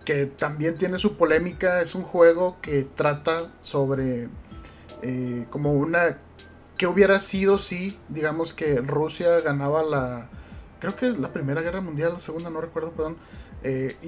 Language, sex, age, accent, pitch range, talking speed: Spanish, male, 30-49, Mexican, 145-180 Hz, 160 wpm